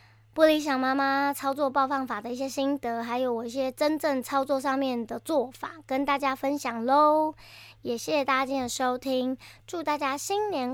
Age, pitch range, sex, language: 20-39, 245-290 Hz, male, Chinese